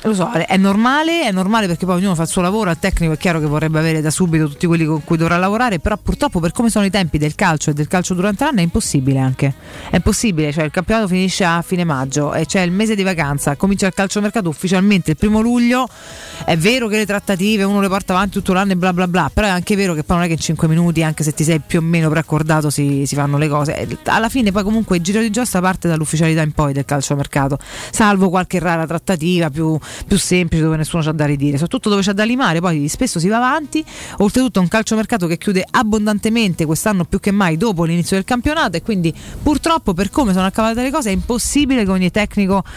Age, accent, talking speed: 30-49, native, 245 wpm